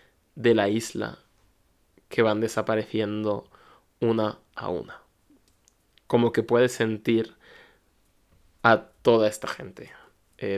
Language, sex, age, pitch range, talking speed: Spanish, male, 20-39, 110-120 Hz, 100 wpm